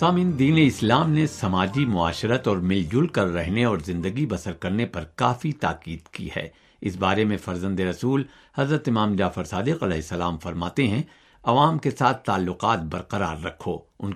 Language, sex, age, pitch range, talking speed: Urdu, male, 60-79, 90-130 Hz, 170 wpm